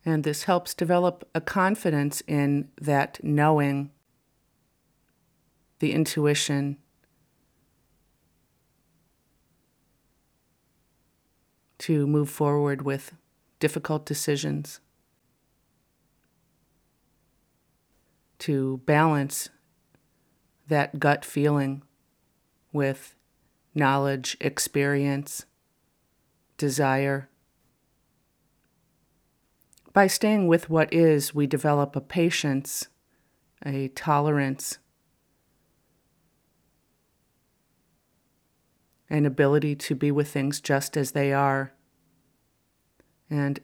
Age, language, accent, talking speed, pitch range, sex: 40-59, English, American, 65 wpm, 140-155 Hz, female